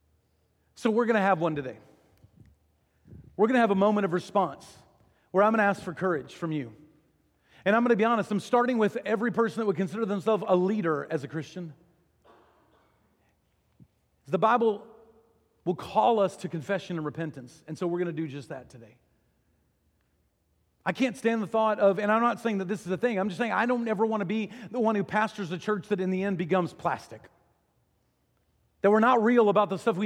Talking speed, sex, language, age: 210 wpm, male, English, 40-59